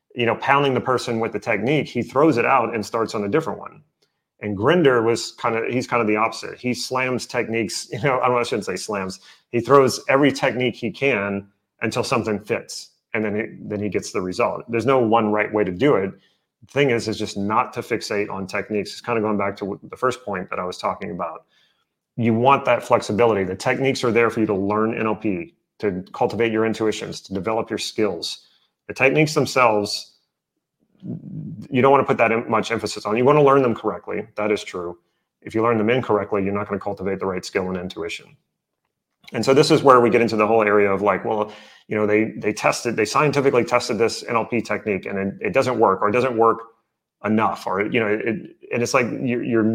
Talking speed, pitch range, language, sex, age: 230 wpm, 105-125 Hz, English, male, 30-49